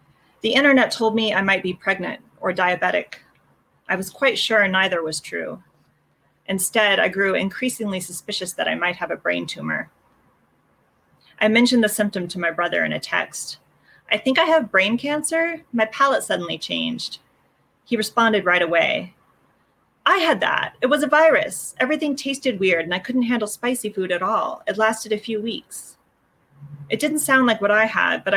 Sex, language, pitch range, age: female, English, 190-245 Hz, 30-49